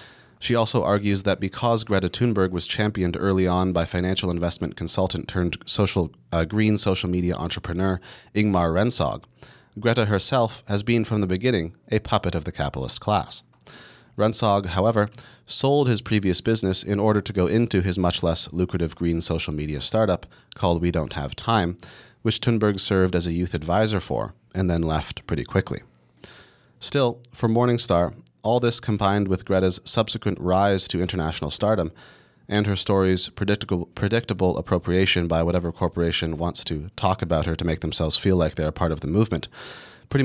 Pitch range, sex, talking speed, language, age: 85-110 Hz, male, 165 wpm, English, 30-49